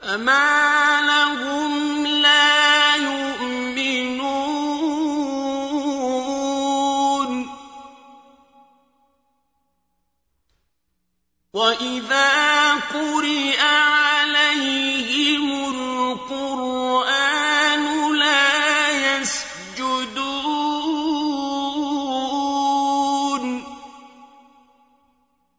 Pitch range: 255-295 Hz